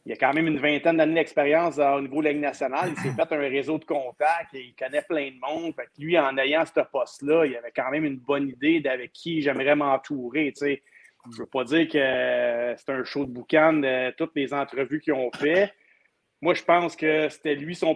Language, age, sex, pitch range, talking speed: French, 30-49, male, 135-160 Hz, 235 wpm